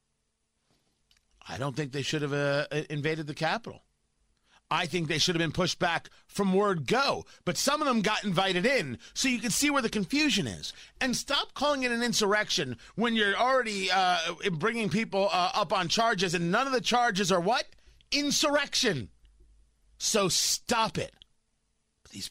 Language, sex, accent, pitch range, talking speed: English, male, American, 155-225 Hz, 175 wpm